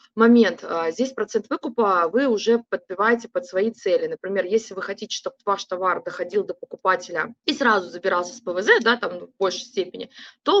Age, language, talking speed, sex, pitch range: 20-39, Russian, 175 wpm, female, 195-245 Hz